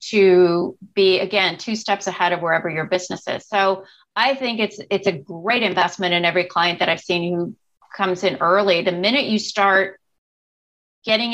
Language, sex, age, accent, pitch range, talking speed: English, female, 30-49, American, 180-215 Hz, 180 wpm